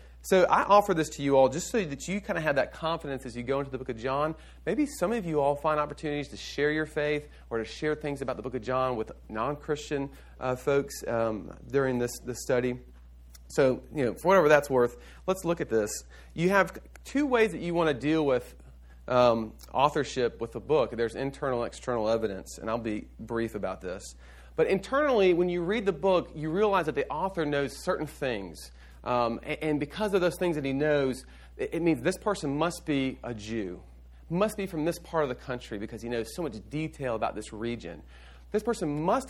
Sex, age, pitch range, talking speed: male, 40-59, 110-165 Hz, 220 wpm